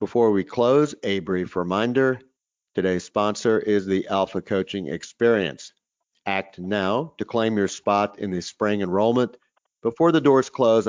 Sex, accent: male, American